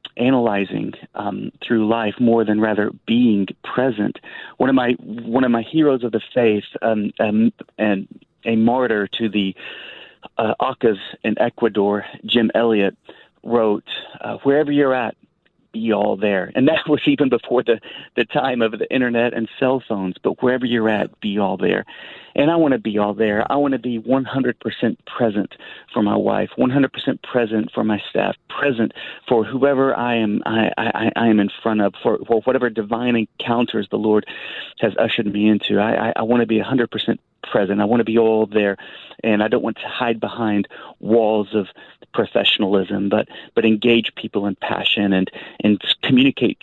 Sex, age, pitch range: male, 40-59, 105-125 Hz